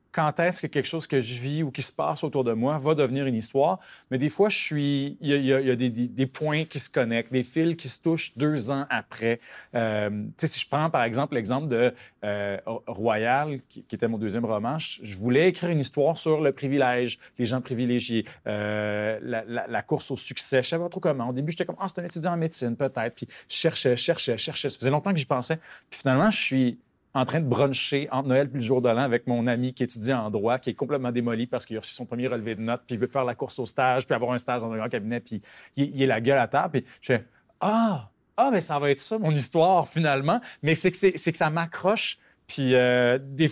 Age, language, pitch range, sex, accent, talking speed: 30-49, French, 120-155 Hz, male, Canadian, 260 wpm